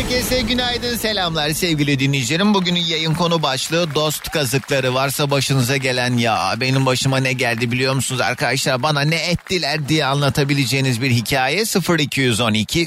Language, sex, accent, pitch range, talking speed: Turkish, male, native, 120-160 Hz, 140 wpm